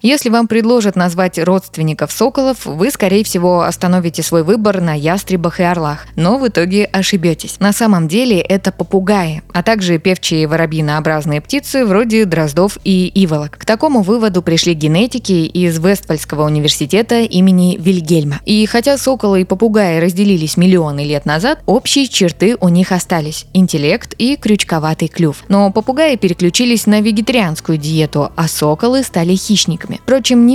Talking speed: 145 wpm